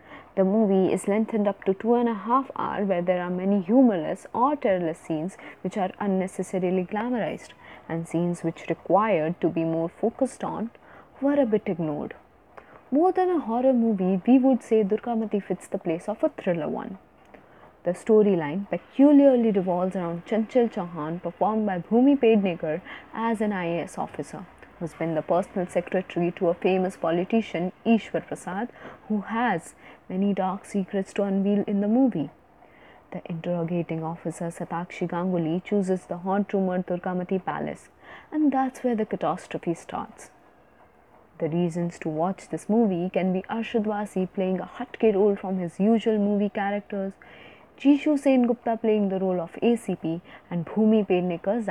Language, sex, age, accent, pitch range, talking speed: English, female, 20-39, Indian, 175-225 Hz, 155 wpm